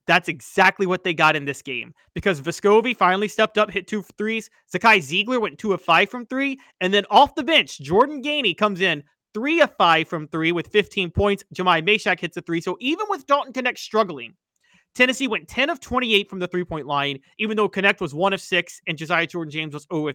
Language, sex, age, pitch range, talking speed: English, male, 30-49, 160-215 Hz, 215 wpm